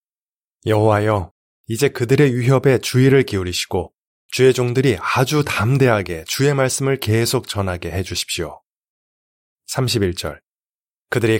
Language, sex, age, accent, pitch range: Korean, male, 20-39, native, 95-130 Hz